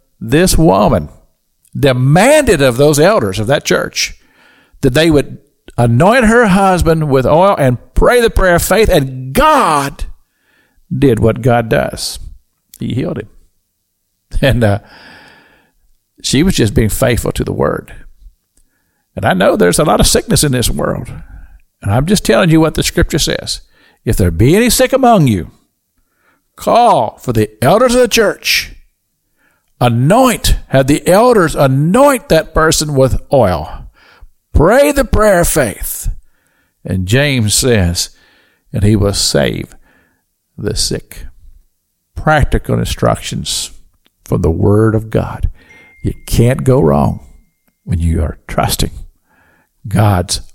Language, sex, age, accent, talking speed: English, male, 60-79, American, 135 wpm